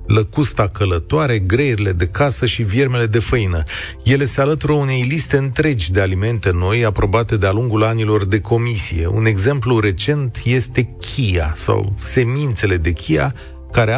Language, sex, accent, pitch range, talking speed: Romanian, male, native, 95-130 Hz, 145 wpm